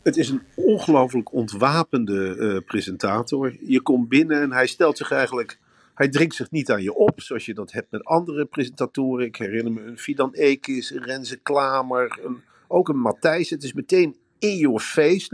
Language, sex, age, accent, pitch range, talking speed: Dutch, male, 50-69, Dutch, 150-245 Hz, 190 wpm